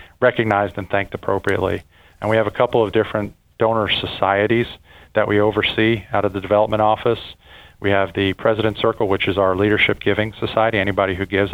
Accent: American